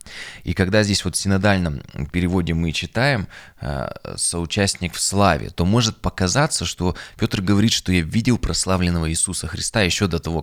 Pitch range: 85-100 Hz